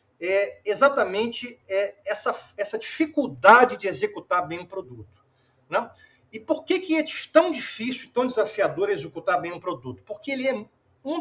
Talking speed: 150 wpm